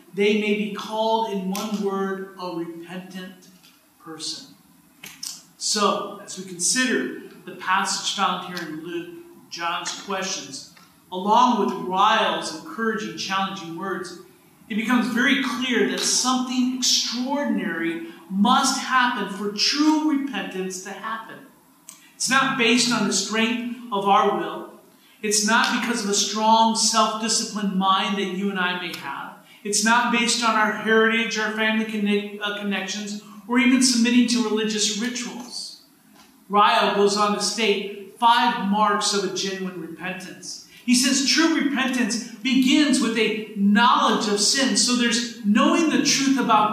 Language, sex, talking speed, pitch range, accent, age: English, male, 140 wpm, 200-240 Hz, American, 40-59